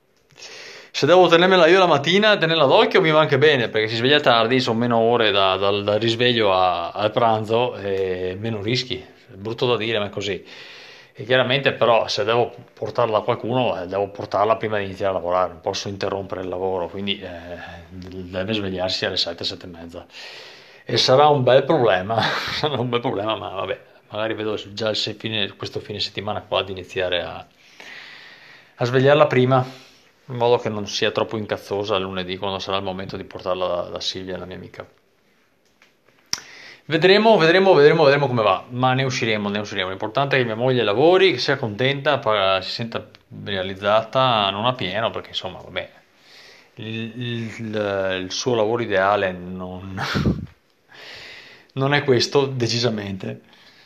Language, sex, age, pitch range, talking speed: Italian, male, 30-49, 95-130 Hz, 165 wpm